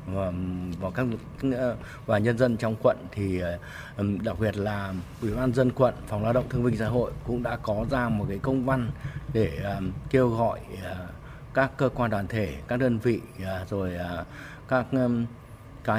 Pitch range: 100-125 Hz